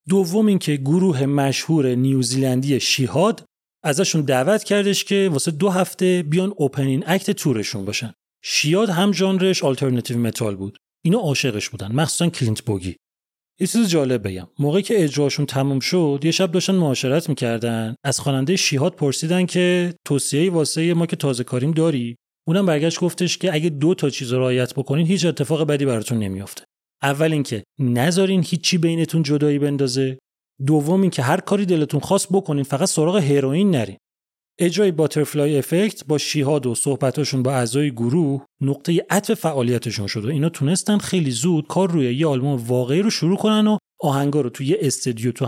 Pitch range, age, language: 130-175 Hz, 30-49, Persian